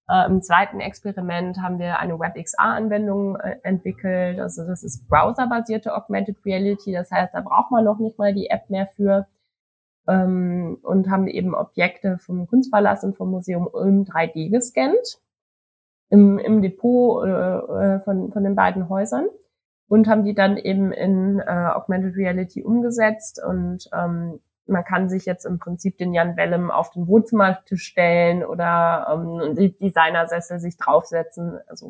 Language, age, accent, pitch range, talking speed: German, 20-39, German, 175-205 Hz, 150 wpm